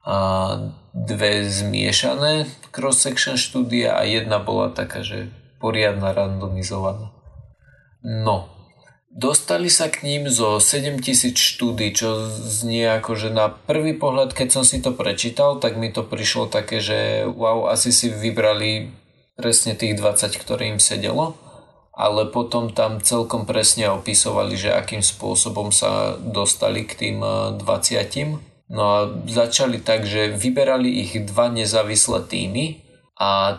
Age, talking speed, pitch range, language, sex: 20-39, 130 wpm, 100-120 Hz, Slovak, male